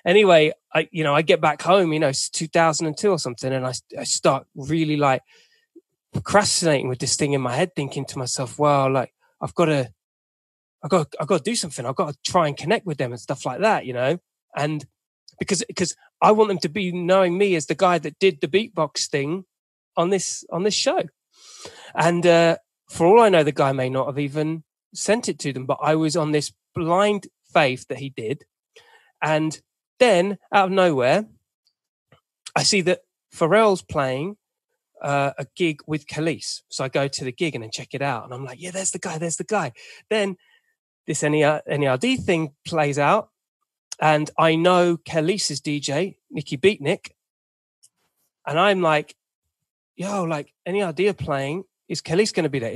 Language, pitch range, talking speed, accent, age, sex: English, 145-195 Hz, 190 wpm, British, 20-39, male